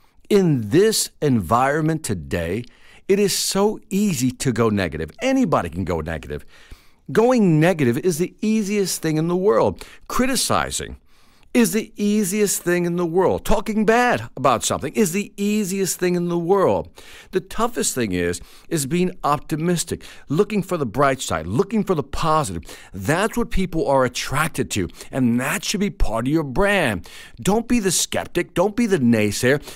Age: 50-69